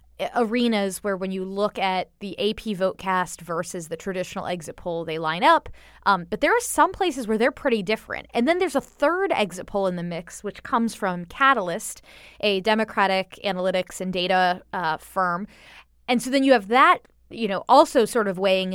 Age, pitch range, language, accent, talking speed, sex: 20-39, 190-255 Hz, English, American, 195 wpm, female